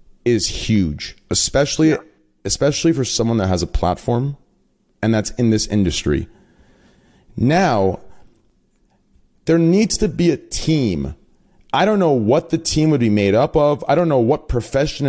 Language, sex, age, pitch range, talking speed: English, male, 30-49, 105-150 Hz, 150 wpm